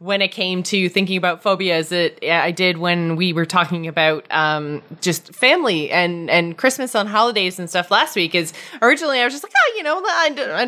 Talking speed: 225 wpm